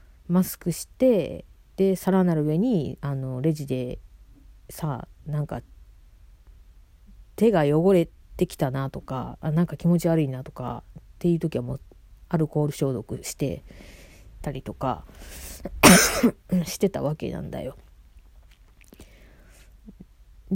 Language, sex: Japanese, female